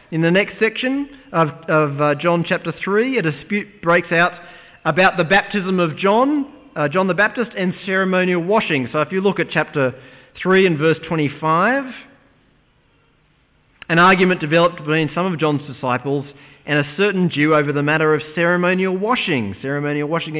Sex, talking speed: male, 160 wpm